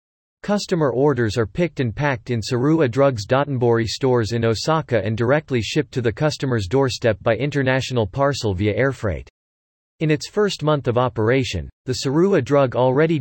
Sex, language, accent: male, English, American